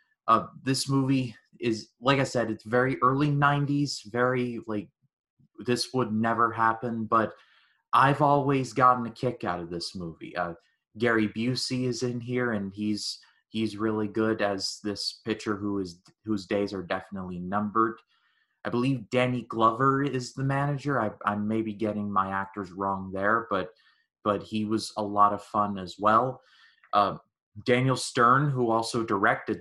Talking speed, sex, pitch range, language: 160 wpm, male, 100-120 Hz, English